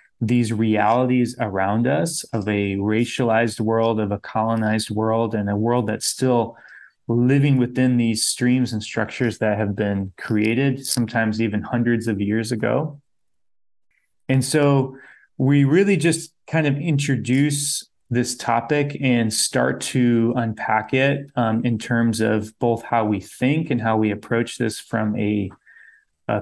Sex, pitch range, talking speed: male, 110-130 Hz, 145 wpm